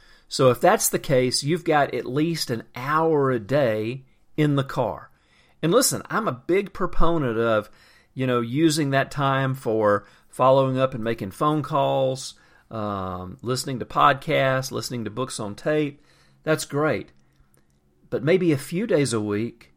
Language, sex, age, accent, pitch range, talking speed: English, male, 40-59, American, 115-150 Hz, 160 wpm